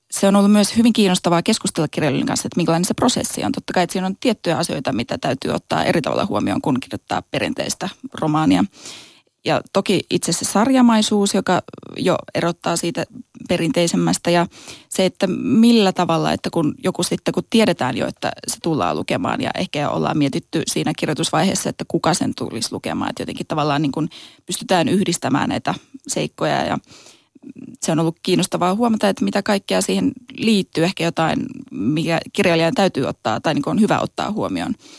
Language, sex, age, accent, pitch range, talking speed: Finnish, female, 20-39, native, 170-220 Hz, 175 wpm